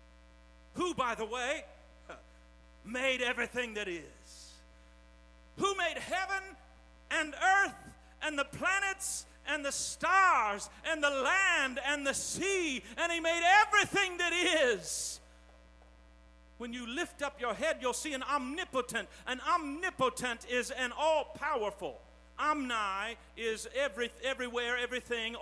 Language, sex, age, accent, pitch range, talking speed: English, male, 50-69, American, 205-290 Hz, 120 wpm